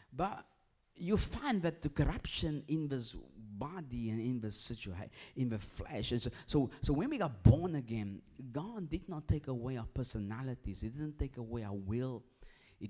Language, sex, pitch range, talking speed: English, male, 115-145 Hz, 175 wpm